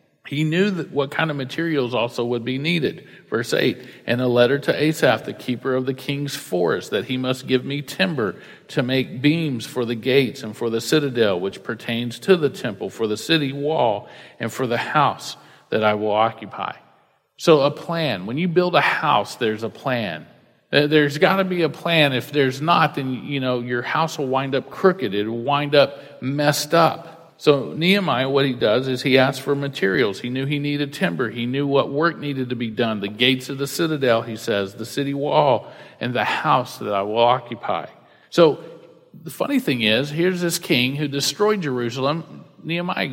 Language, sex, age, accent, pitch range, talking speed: English, male, 50-69, American, 120-150 Hz, 200 wpm